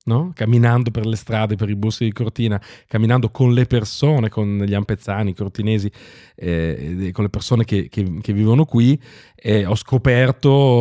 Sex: male